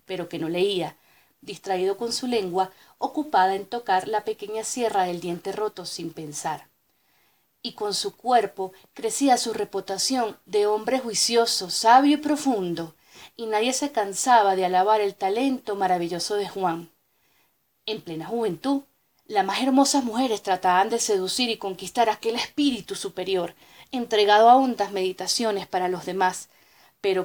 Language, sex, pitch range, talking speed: Spanish, female, 190-250 Hz, 145 wpm